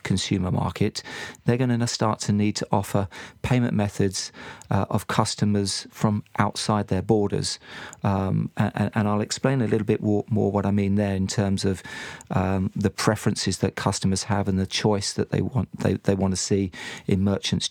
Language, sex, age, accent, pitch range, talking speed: English, male, 40-59, British, 100-110 Hz, 185 wpm